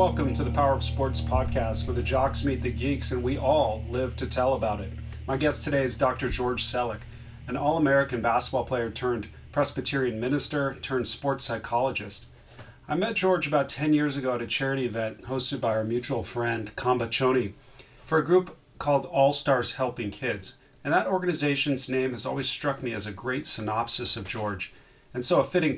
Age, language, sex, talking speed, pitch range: 40-59, English, male, 190 wpm, 115-140 Hz